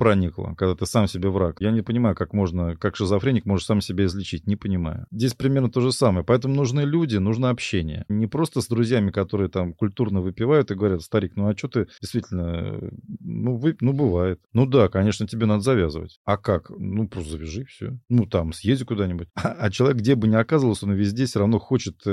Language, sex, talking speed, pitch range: Russian, male, 205 wpm, 95-120 Hz